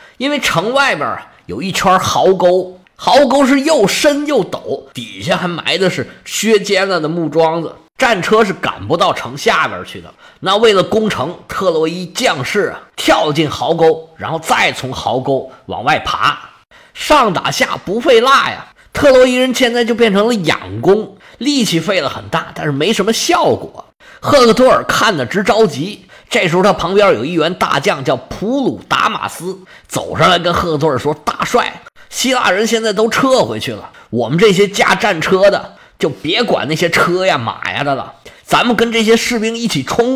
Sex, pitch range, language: male, 170-235 Hz, Chinese